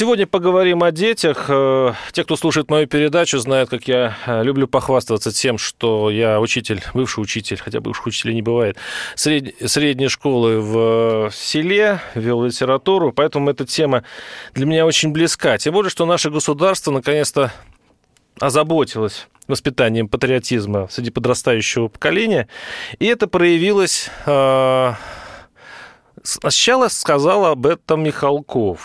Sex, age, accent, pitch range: male, 30-49, native, 120-165 Hz